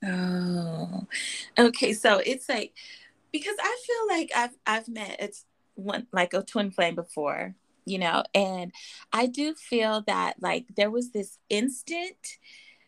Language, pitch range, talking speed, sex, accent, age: English, 185-245 Hz, 145 wpm, female, American, 20-39